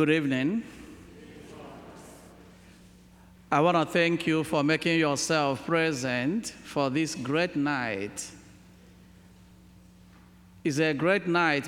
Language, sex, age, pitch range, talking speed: English, male, 50-69, 125-165 Hz, 100 wpm